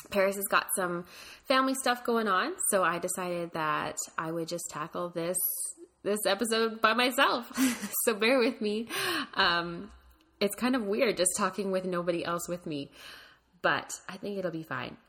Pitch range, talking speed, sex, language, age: 160-205 Hz, 170 wpm, female, English, 20-39